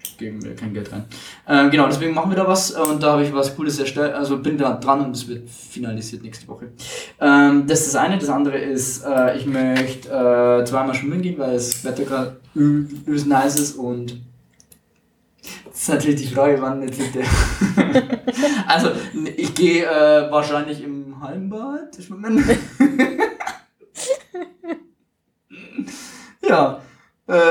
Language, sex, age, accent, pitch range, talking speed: German, male, 20-39, German, 130-155 Hz, 155 wpm